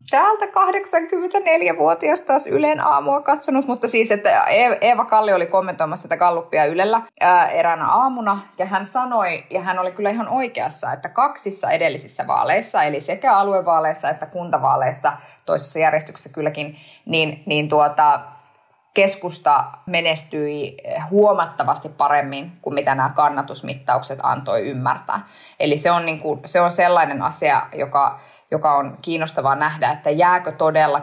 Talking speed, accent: 130 wpm, native